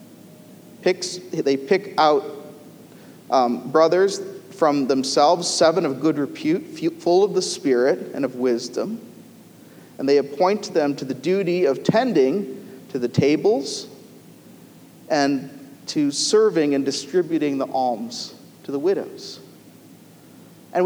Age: 40-59